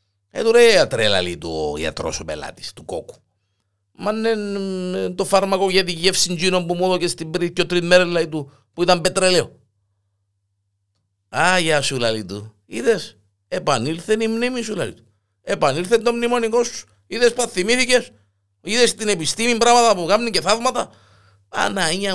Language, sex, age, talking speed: Greek, male, 50-69, 165 wpm